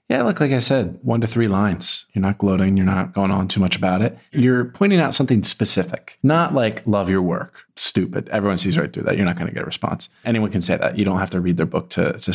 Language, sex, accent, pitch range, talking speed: English, male, American, 95-125 Hz, 270 wpm